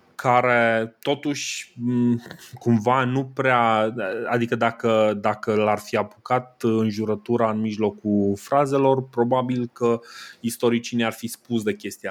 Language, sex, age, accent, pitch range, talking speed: Romanian, male, 20-39, native, 110-130 Hz, 120 wpm